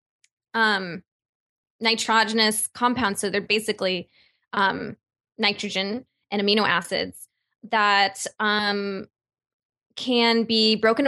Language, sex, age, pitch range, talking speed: English, female, 20-39, 200-240 Hz, 85 wpm